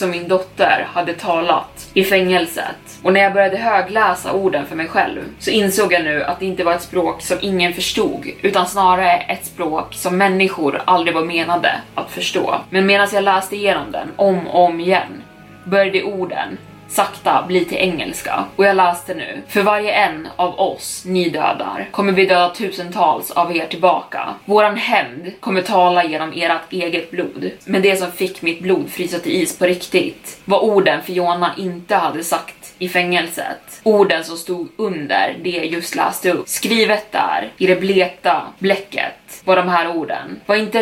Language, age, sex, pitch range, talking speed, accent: Swedish, 20-39, female, 175-195 Hz, 180 wpm, native